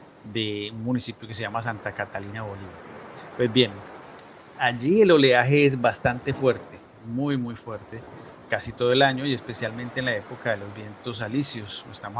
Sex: male